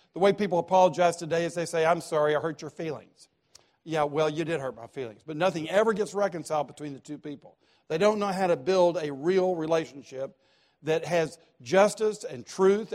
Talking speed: 205 wpm